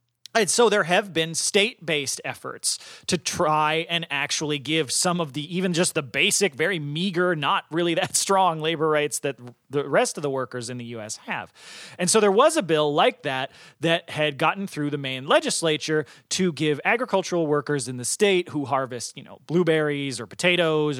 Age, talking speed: 30-49, 190 wpm